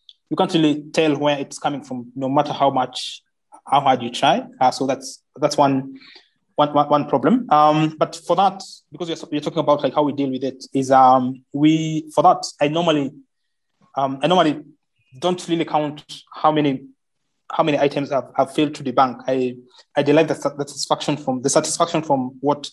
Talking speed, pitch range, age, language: 190 wpm, 135-160 Hz, 20-39, English